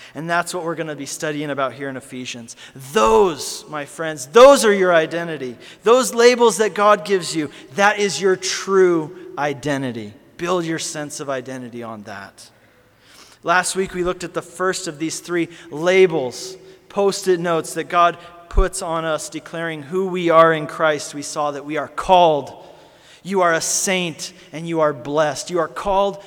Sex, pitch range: male, 145-180 Hz